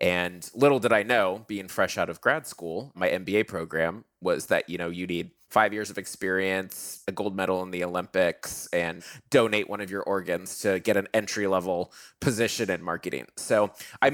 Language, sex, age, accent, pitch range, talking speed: English, male, 20-39, American, 90-115 Hz, 195 wpm